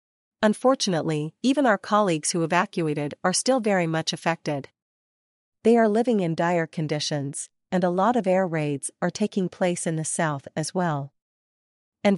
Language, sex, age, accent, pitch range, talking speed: English, female, 40-59, American, 160-205 Hz, 160 wpm